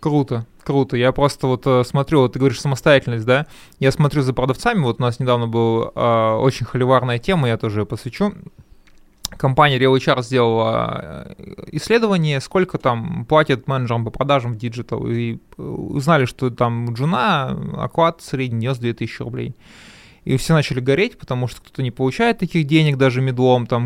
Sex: male